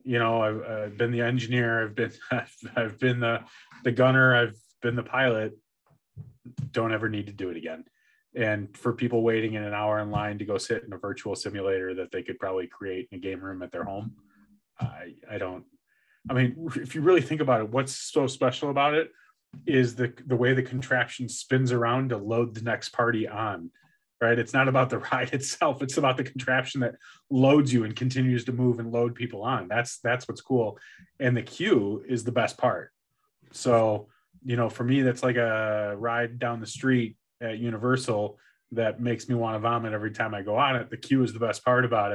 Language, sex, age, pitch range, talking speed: English, male, 30-49, 110-130 Hz, 210 wpm